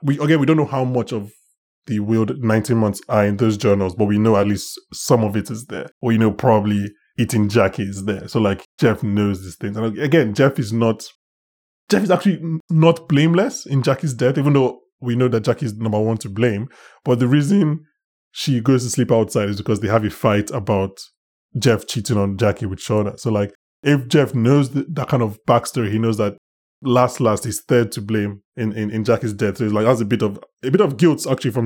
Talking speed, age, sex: 230 wpm, 20-39, male